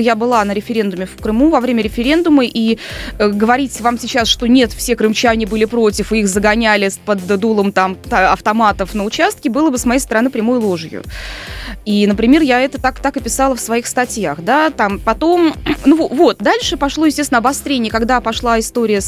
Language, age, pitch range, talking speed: Russian, 20-39, 220-265 Hz, 190 wpm